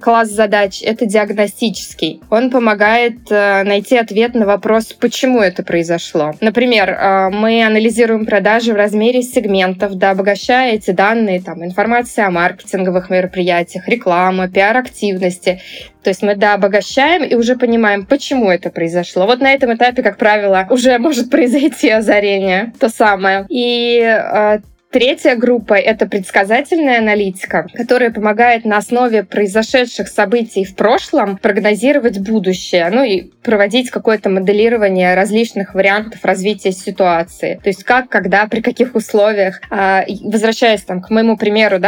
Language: Russian